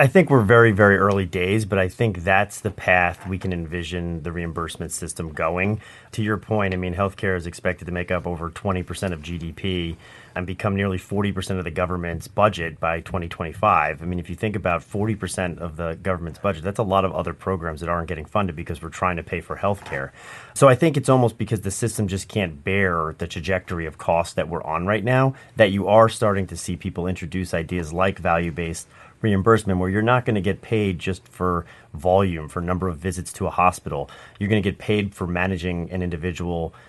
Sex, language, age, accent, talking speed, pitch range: male, English, 30-49, American, 215 wpm, 85-105 Hz